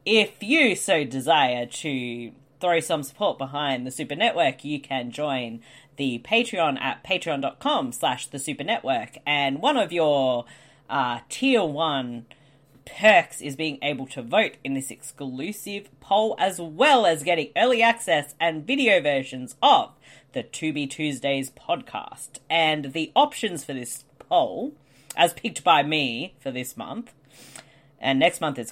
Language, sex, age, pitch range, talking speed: English, female, 30-49, 135-175 Hz, 150 wpm